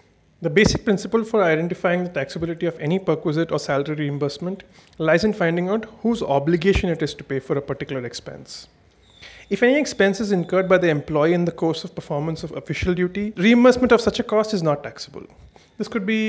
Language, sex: English, male